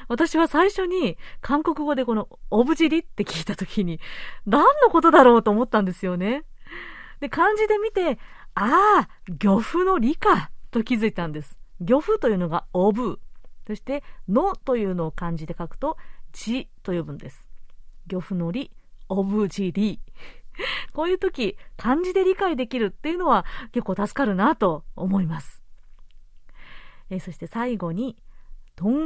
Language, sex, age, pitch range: Japanese, female, 40-59, 190-300 Hz